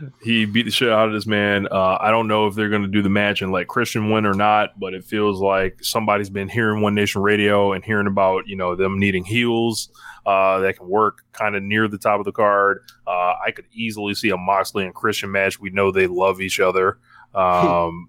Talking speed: 240 wpm